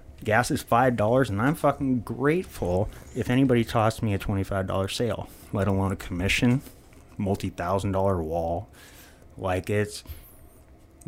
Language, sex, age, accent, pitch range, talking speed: English, male, 30-49, American, 90-110 Hz, 125 wpm